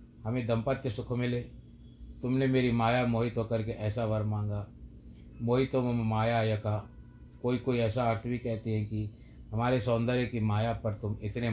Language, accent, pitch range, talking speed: Hindi, native, 100-120 Hz, 165 wpm